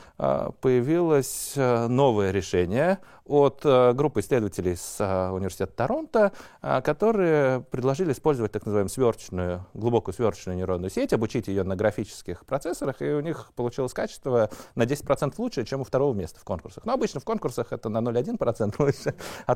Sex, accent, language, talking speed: male, native, Russian, 155 wpm